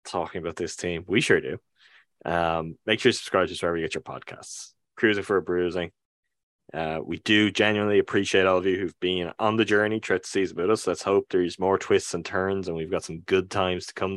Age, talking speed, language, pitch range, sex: 20-39, 235 wpm, English, 90-115 Hz, male